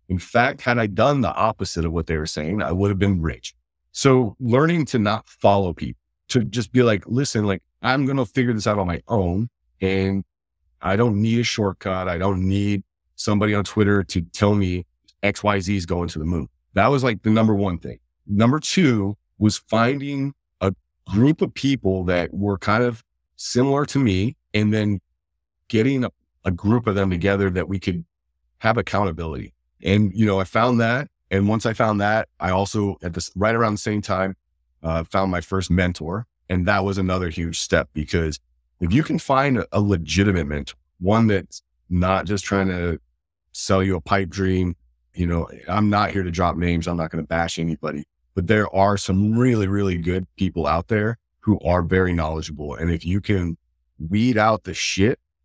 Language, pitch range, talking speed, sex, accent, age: English, 85-110 Hz, 195 wpm, male, American, 40-59